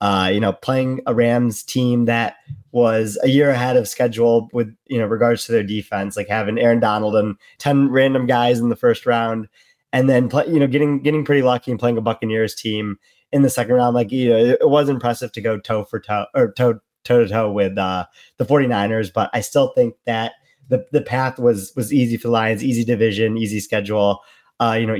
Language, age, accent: English, 20-39, American